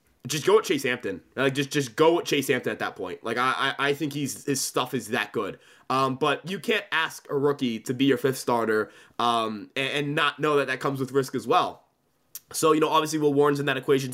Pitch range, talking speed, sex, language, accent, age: 130-155 Hz, 245 wpm, male, English, American, 20-39